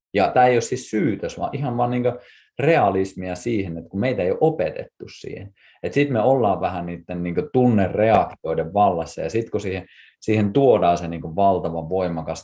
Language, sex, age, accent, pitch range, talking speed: Finnish, male, 30-49, native, 85-105 Hz, 180 wpm